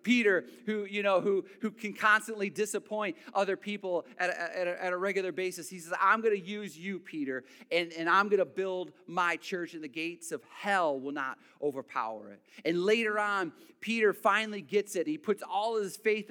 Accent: American